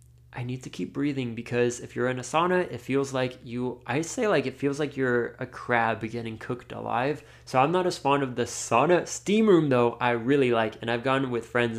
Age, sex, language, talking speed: 20-39, male, English, 235 wpm